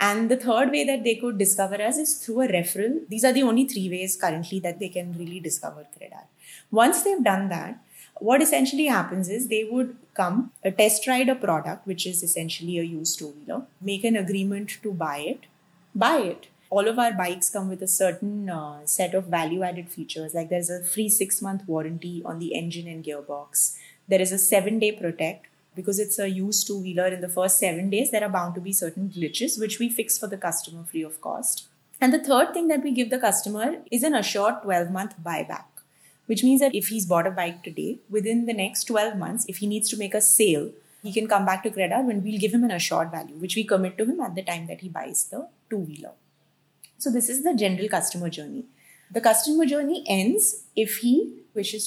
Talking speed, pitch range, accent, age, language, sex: 215 wpm, 180-230 Hz, Indian, 20-39, English, female